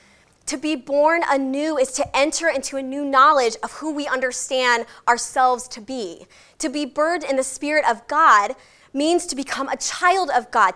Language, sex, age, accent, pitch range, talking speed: English, female, 20-39, American, 235-305 Hz, 185 wpm